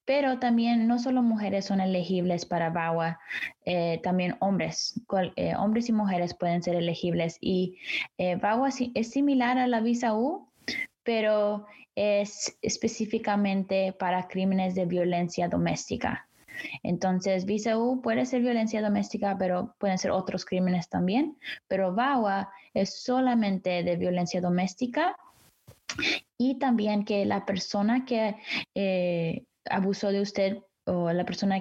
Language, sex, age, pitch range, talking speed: English, female, 20-39, 180-225 Hz, 135 wpm